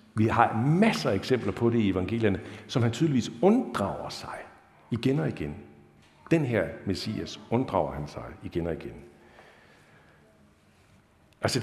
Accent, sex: native, male